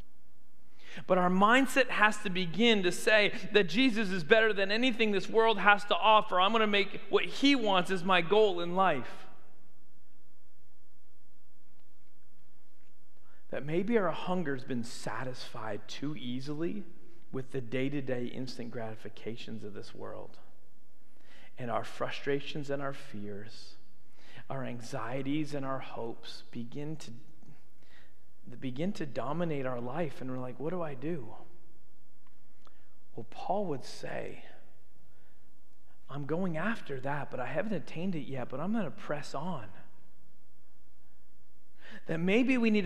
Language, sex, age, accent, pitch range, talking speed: English, male, 40-59, American, 125-205 Hz, 135 wpm